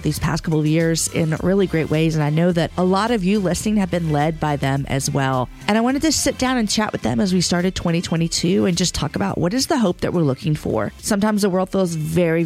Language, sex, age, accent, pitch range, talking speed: English, female, 40-59, American, 160-210 Hz, 270 wpm